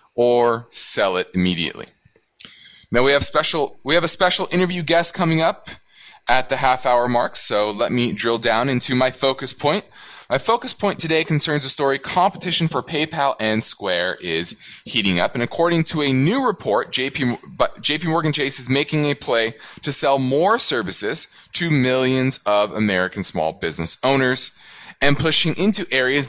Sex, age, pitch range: male, 20-39, 120-160 Hz